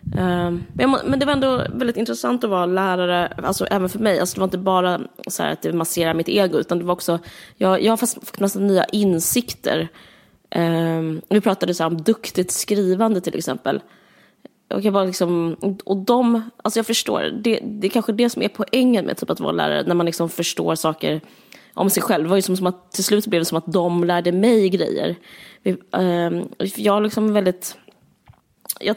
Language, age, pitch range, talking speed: Swedish, 20-39, 170-210 Hz, 200 wpm